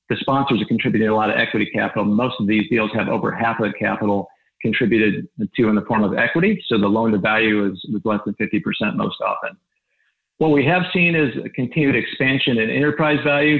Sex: male